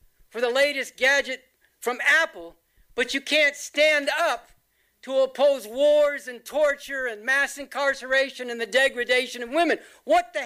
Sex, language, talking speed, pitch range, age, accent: male, English, 150 wpm, 230-310 Hz, 60-79, American